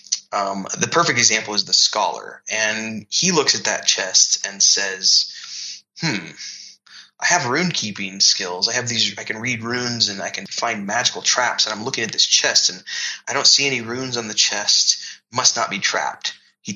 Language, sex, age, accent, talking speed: English, male, 20-39, American, 190 wpm